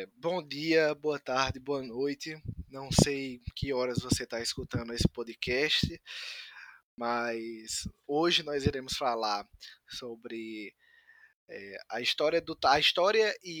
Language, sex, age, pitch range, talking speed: Portuguese, male, 20-39, 120-170 Hz, 125 wpm